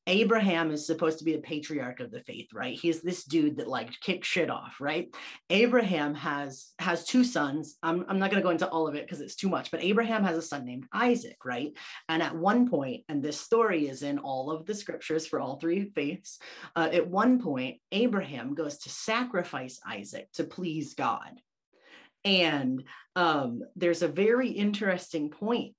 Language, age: English, 30-49